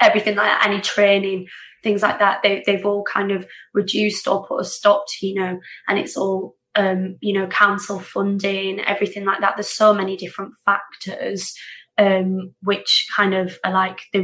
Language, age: English, 20-39